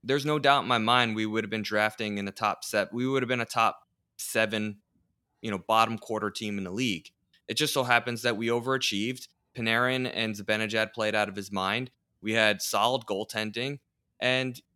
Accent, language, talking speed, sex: American, English, 205 wpm, male